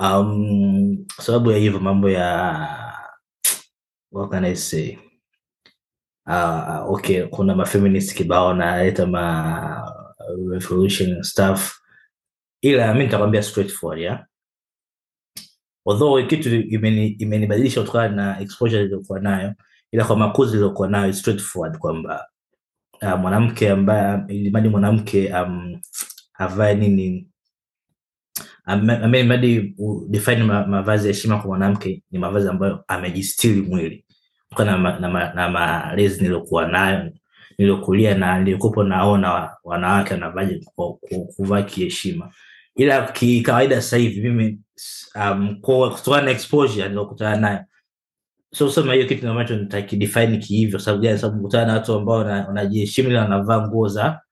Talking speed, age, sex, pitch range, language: 110 wpm, 20-39, male, 95-110 Hz, Swahili